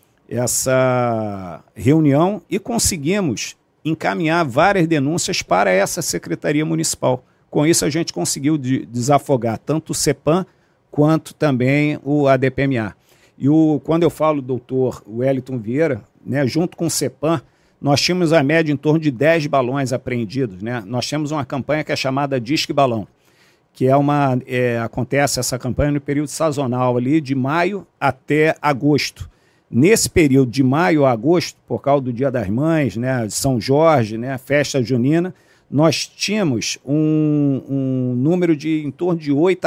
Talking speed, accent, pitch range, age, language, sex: 155 wpm, Brazilian, 125-155 Hz, 50-69, Portuguese, male